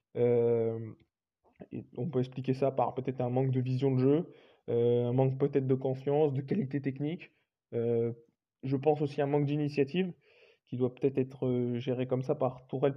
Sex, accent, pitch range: male, French, 130-150 Hz